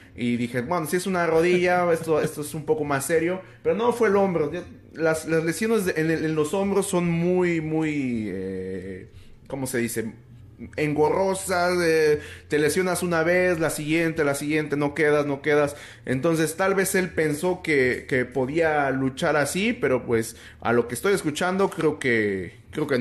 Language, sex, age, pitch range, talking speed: Spanish, male, 30-49, 125-180 Hz, 175 wpm